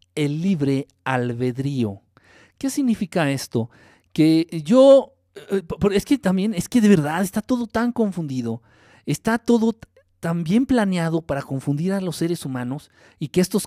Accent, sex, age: Mexican, male, 50-69